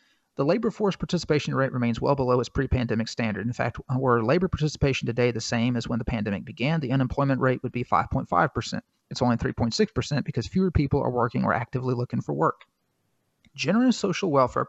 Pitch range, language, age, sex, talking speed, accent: 120-145 Hz, English, 40-59, male, 190 wpm, American